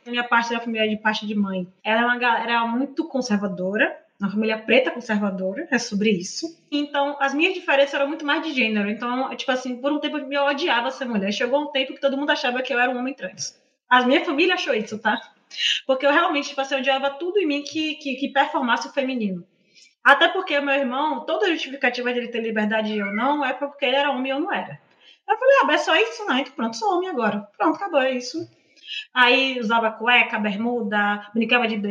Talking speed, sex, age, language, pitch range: 225 wpm, female, 20-39, Portuguese, 225-295 Hz